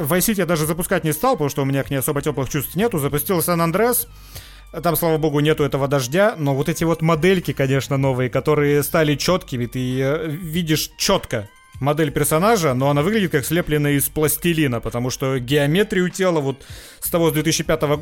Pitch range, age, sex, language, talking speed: 140-175 Hz, 30-49, male, Russian, 185 wpm